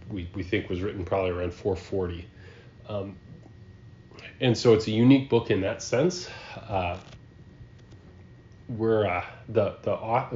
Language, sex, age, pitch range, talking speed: English, male, 30-49, 90-110 Hz, 140 wpm